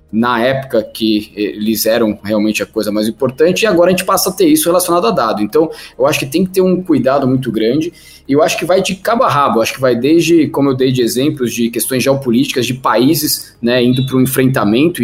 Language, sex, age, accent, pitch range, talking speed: Portuguese, male, 20-39, Brazilian, 125-155 Hz, 245 wpm